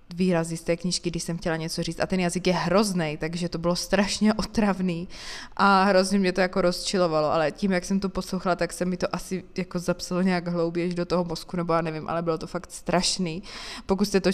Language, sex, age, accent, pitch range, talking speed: Czech, female, 20-39, native, 165-185 Hz, 225 wpm